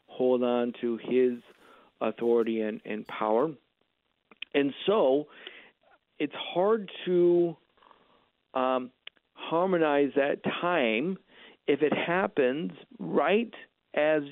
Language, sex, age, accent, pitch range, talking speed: English, male, 50-69, American, 120-150 Hz, 90 wpm